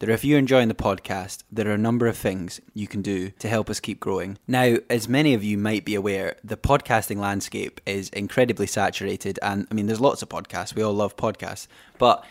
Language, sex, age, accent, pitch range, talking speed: English, male, 10-29, British, 100-115 Hz, 225 wpm